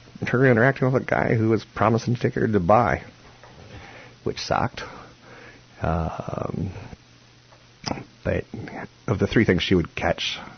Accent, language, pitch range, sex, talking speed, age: American, English, 85-115 Hz, male, 140 wpm, 50-69